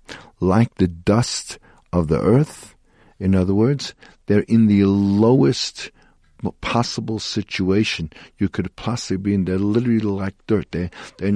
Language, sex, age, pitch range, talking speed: English, male, 50-69, 95-115 Hz, 135 wpm